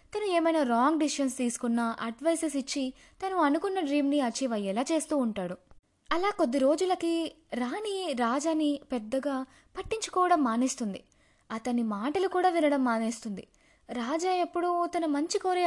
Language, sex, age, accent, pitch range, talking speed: Telugu, female, 20-39, native, 230-315 Hz, 125 wpm